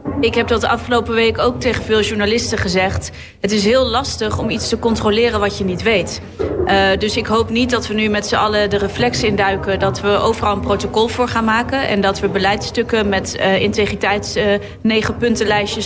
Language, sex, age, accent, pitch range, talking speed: Dutch, female, 30-49, Dutch, 200-230 Hz, 195 wpm